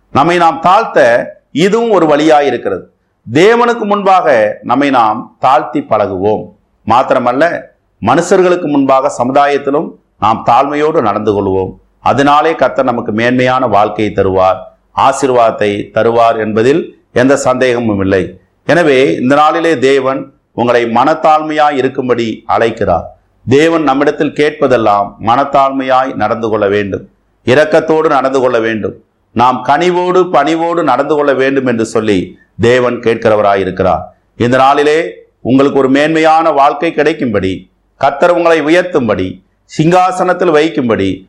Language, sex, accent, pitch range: Tamil, male, native, 115-160 Hz